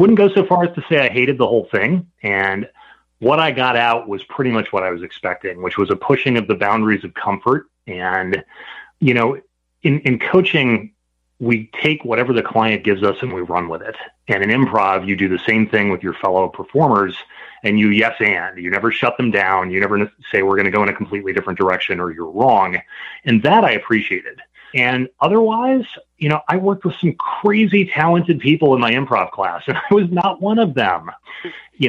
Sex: male